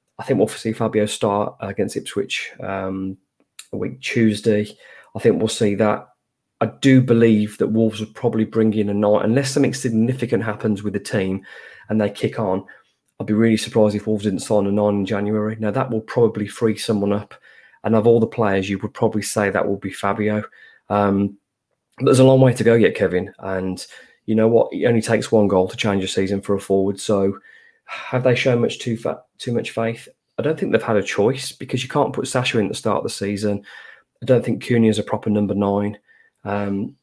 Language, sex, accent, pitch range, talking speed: English, male, British, 100-115 Hz, 220 wpm